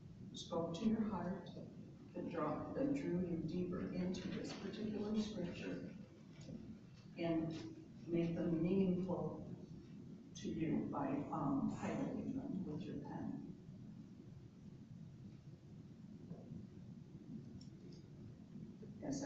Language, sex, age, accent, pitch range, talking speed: English, female, 60-79, American, 170-215 Hz, 80 wpm